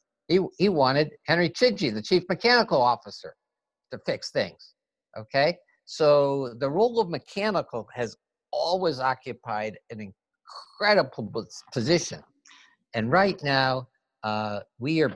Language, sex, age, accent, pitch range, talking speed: English, male, 60-79, American, 110-165 Hz, 120 wpm